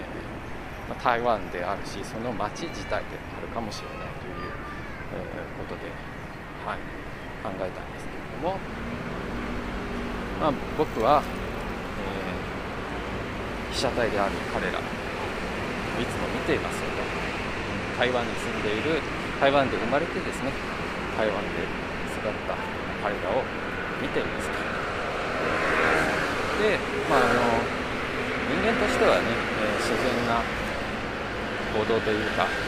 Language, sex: Japanese, male